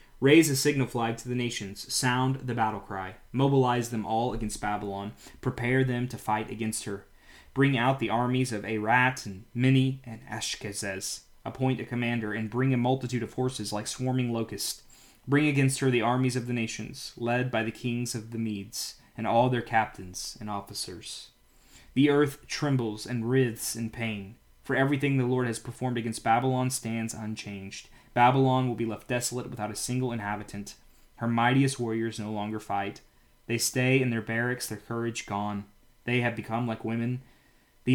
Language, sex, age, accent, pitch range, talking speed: English, male, 20-39, American, 110-125 Hz, 175 wpm